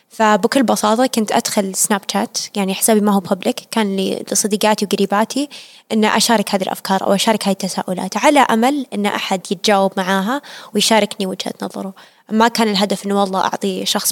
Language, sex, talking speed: Arabic, female, 160 wpm